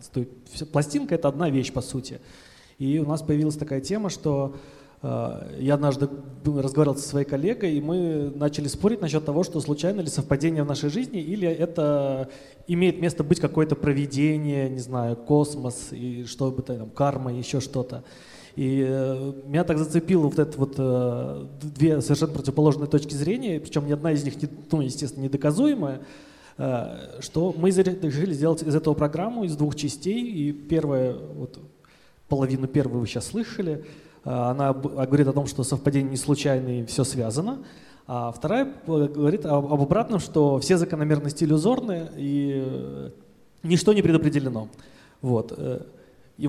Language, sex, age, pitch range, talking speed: Russian, male, 20-39, 135-160 Hz, 150 wpm